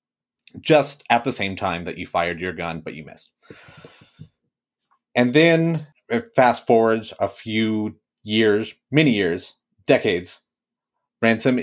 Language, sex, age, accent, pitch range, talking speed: English, male, 30-49, American, 100-140 Hz, 125 wpm